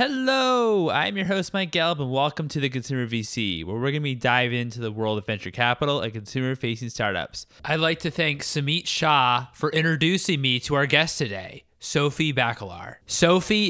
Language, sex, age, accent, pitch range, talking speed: English, male, 20-39, American, 110-145 Hz, 190 wpm